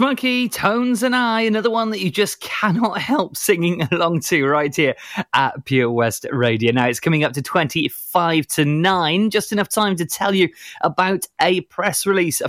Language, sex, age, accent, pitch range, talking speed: English, male, 20-39, British, 130-180 Hz, 185 wpm